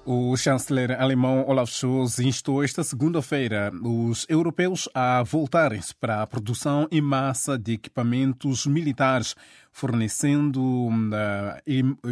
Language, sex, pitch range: Portuguese, male, 120-145 Hz